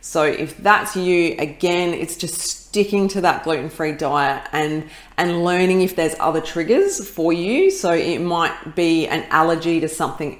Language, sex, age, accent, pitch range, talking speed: English, female, 30-49, Australian, 150-180 Hz, 165 wpm